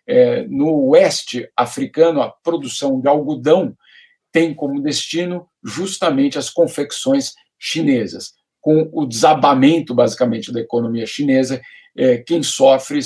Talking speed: 105 wpm